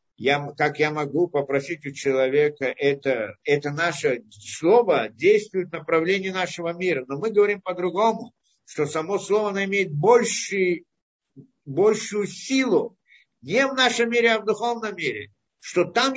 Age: 50-69